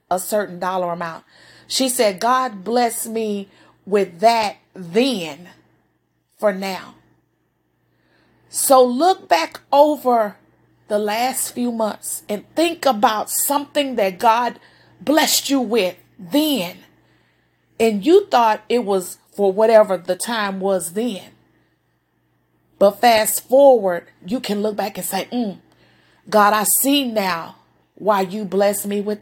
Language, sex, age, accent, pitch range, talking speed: English, female, 30-49, American, 180-230 Hz, 125 wpm